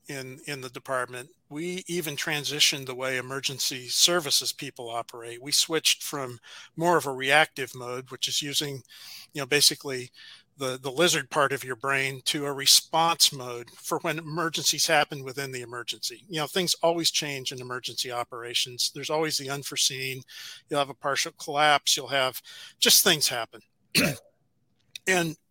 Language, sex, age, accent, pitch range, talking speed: English, male, 50-69, American, 130-160 Hz, 160 wpm